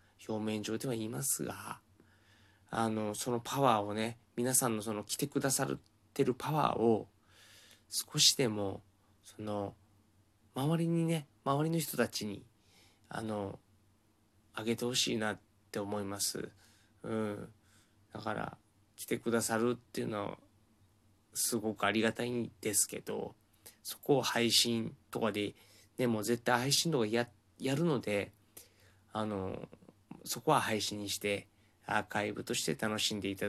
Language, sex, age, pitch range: Japanese, male, 20-39, 105-115 Hz